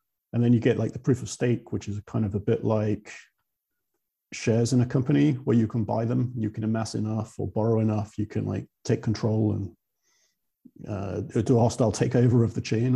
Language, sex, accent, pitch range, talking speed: English, male, British, 105-125 Hz, 215 wpm